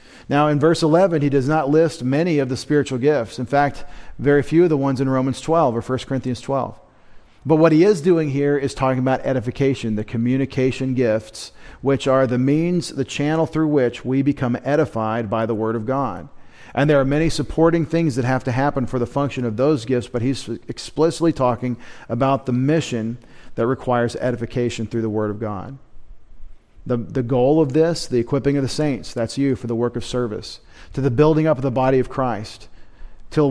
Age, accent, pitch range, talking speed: 40-59, American, 120-145 Hz, 205 wpm